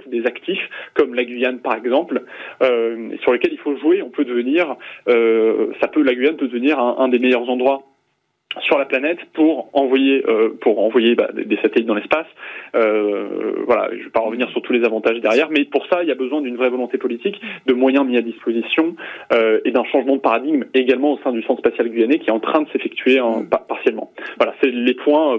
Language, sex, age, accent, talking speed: French, male, 20-39, French, 220 wpm